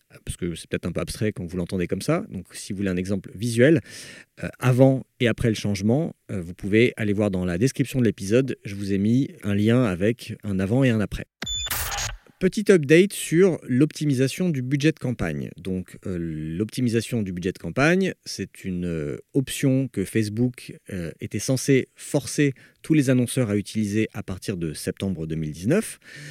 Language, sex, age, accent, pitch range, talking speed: French, male, 40-59, French, 105-145 Hz, 175 wpm